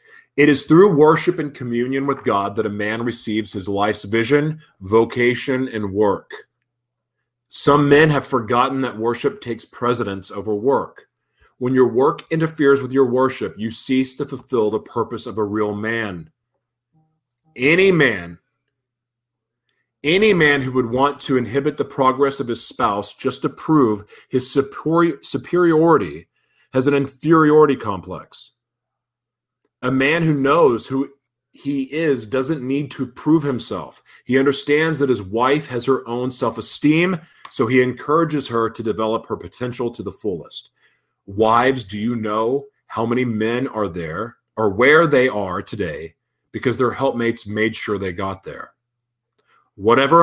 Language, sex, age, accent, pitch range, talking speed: English, male, 30-49, American, 115-140 Hz, 145 wpm